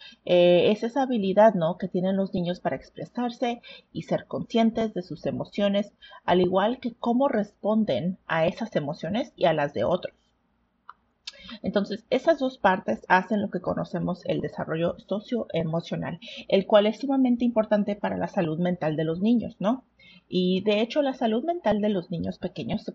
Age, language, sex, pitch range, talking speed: 40-59, English, female, 170-225 Hz, 165 wpm